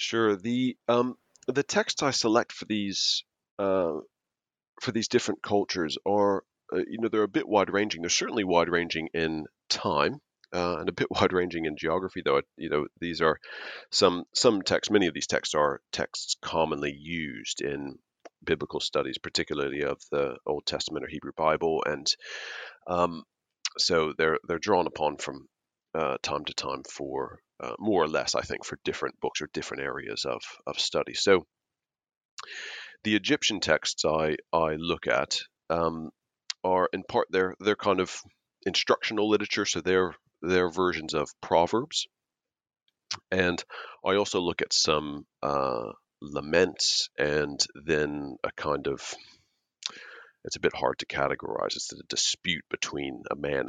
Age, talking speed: 40-59, 160 wpm